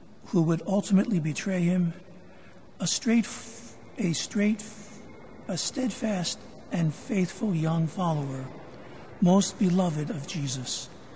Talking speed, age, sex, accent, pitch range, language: 100 wpm, 60-79, male, American, 165-200 Hz, English